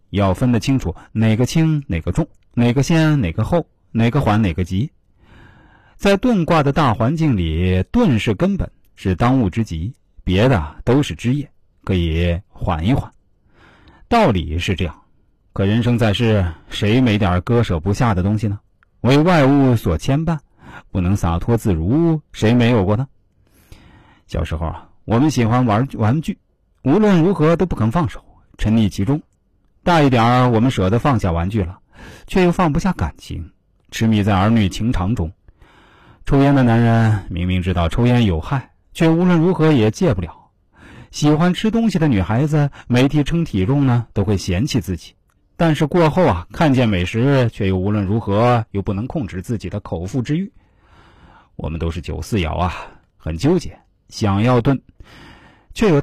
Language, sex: Chinese, male